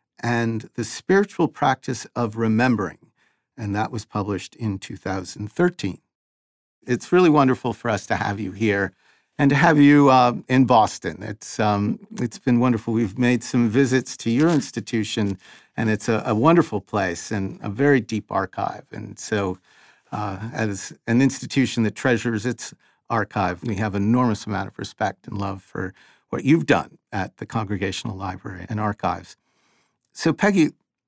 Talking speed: 155 wpm